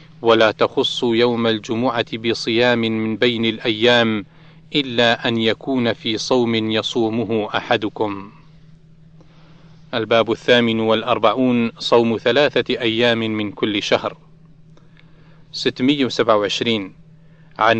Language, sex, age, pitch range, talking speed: Arabic, male, 40-59, 115-155 Hz, 85 wpm